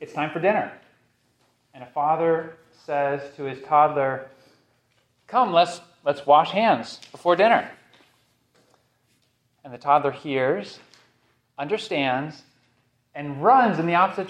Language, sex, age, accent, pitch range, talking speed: English, male, 30-49, American, 125-160 Hz, 120 wpm